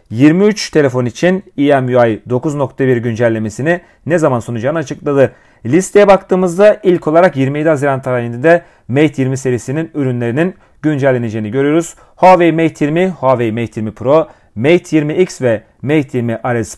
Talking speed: 130 wpm